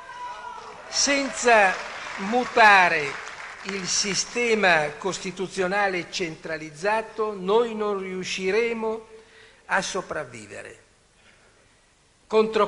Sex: male